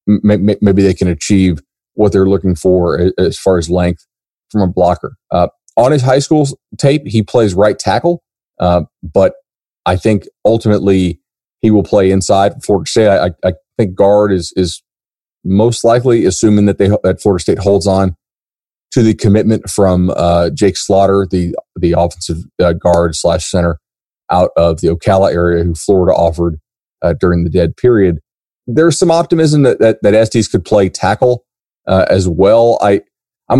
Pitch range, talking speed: 90-110 Hz, 170 wpm